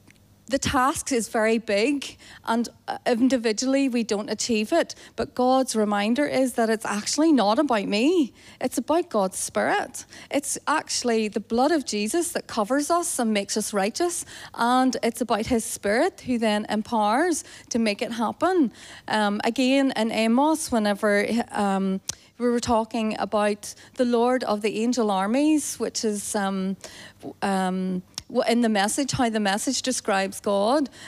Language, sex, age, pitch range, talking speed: English, female, 30-49, 210-270 Hz, 150 wpm